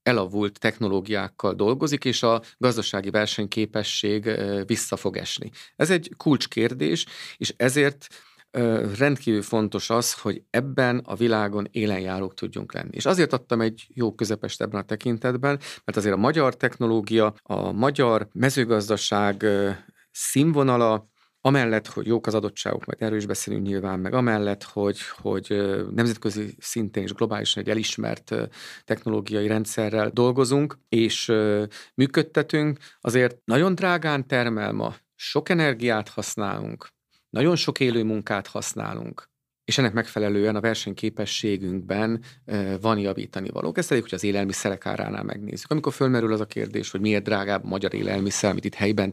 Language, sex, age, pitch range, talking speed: Hungarian, male, 40-59, 105-125 Hz, 130 wpm